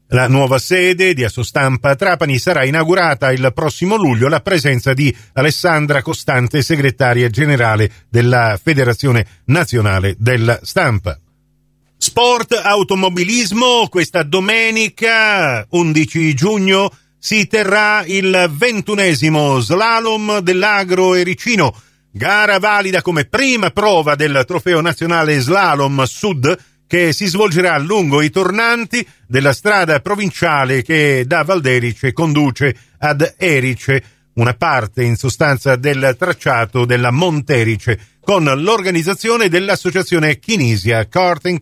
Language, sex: Italian, male